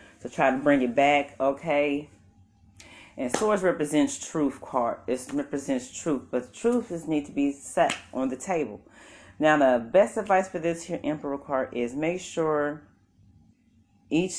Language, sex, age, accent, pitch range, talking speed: English, female, 30-49, American, 110-145 Hz, 160 wpm